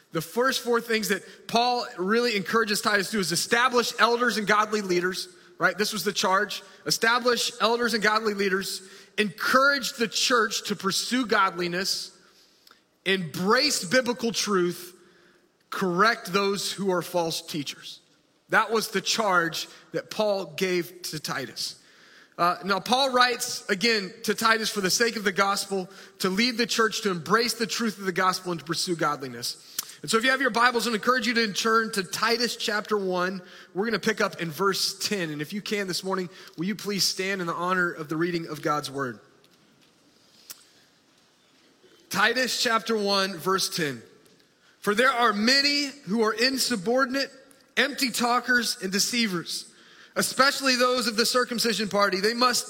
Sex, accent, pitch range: male, American, 190-235 Hz